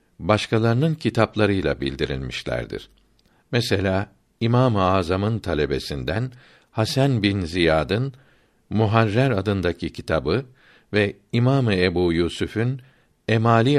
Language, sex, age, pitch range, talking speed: Turkish, male, 60-79, 95-125 Hz, 80 wpm